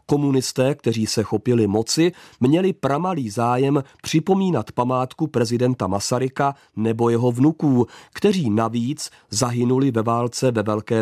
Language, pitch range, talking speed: Czech, 115-140 Hz, 120 wpm